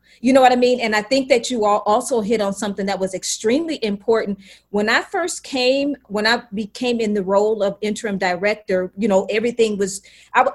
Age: 30-49